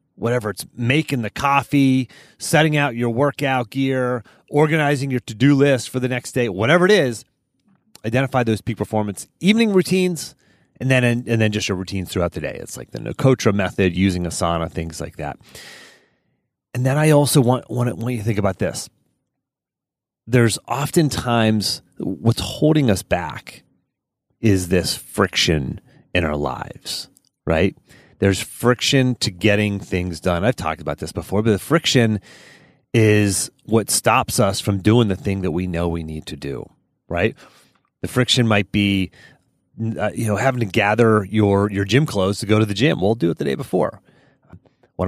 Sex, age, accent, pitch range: male, 30-49, American, 100-130 Hz